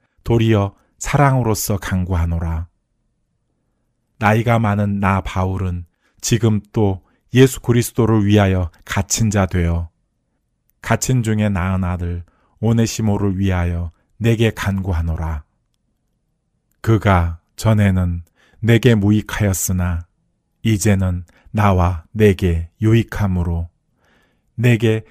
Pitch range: 90-110 Hz